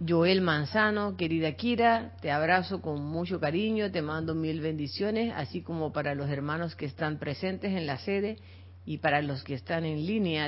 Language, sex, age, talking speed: Spanish, female, 50-69, 180 wpm